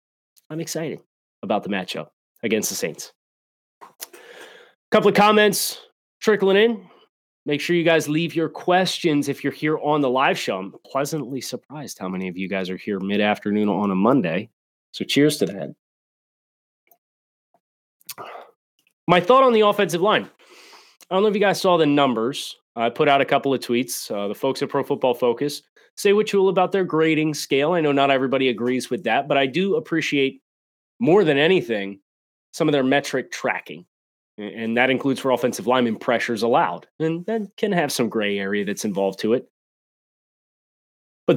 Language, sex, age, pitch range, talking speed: English, male, 30-49, 120-165 Hz, 175 wpm